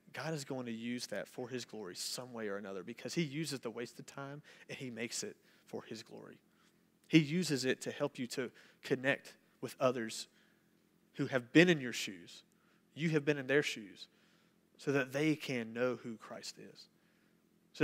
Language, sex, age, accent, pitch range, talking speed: English, male, 30-49, American, 120-160 Hz, 190 wpm